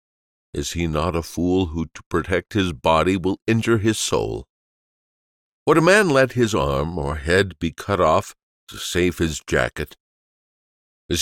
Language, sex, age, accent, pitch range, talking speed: English, male, 50-69, American, 75-115 Hz, 160 wpm